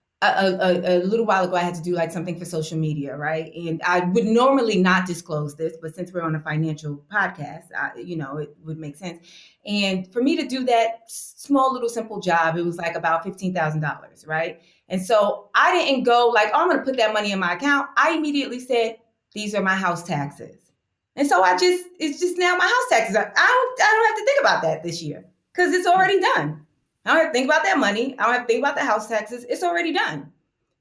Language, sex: English, female